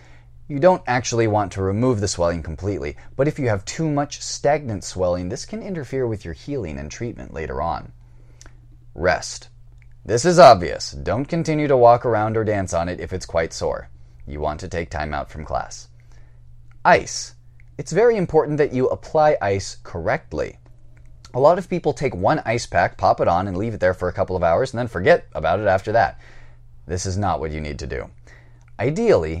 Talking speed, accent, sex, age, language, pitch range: 200 wpm, American, male, 30-49, English, 80-120 Hz